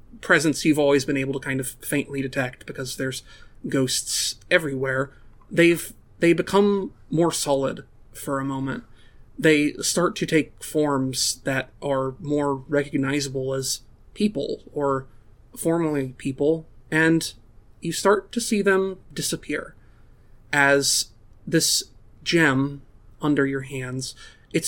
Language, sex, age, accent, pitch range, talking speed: English, male, 30-49, American, 130-160 Hz, 120 wpm